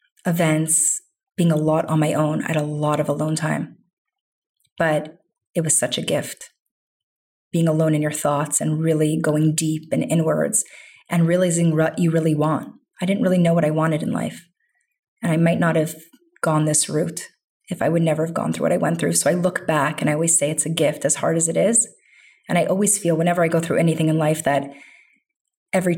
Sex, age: female, 30-49